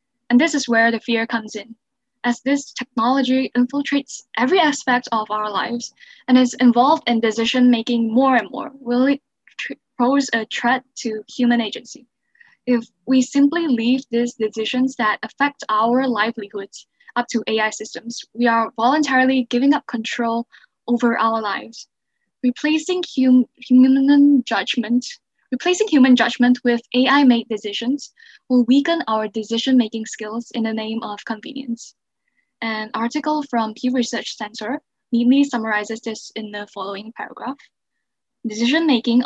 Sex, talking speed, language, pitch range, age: female, 135 wpm, English, 225-265 Hz, 10-29